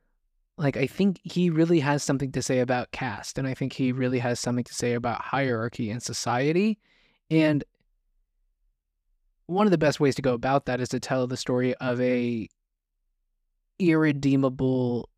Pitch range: 125-155 Hz